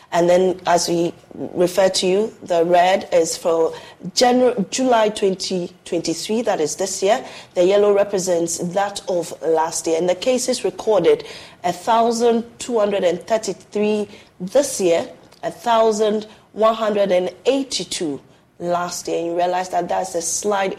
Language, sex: English, female